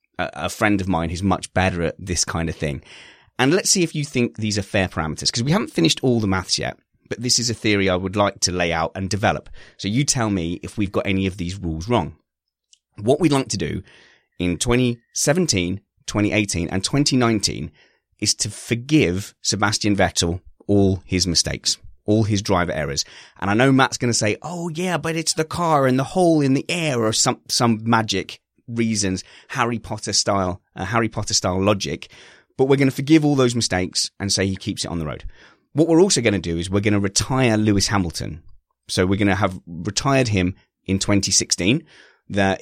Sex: male